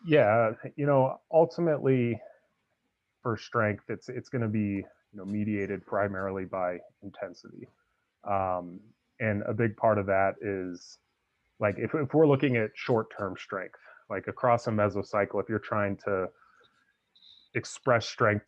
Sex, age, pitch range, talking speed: male, 30-49, 95-110 Hz, 140 wpm